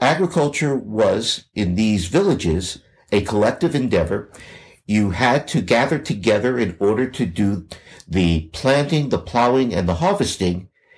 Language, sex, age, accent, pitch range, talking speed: English, male, 60-79, American, 95-130 Hz, 130 wpm